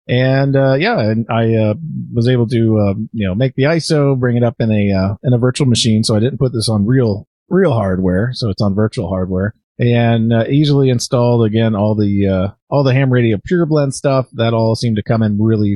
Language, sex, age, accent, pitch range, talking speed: English, male, 30-49, American, 100-120 Hz, 230 wpm